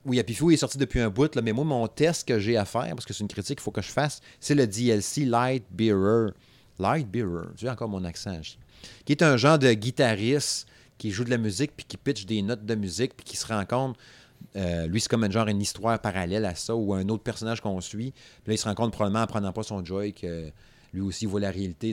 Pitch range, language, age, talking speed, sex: 105-130 Hz, French, 30-49, 275 wpm, male